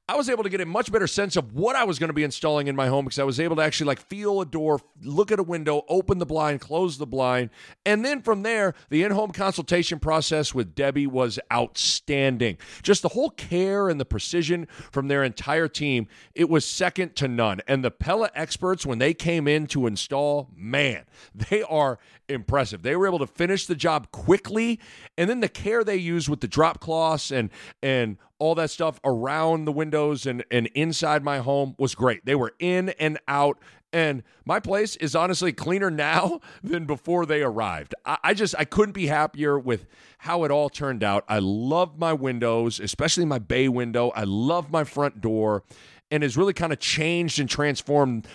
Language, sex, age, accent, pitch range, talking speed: English, male, 40-59, American, 130-175 Hz, 205 wpm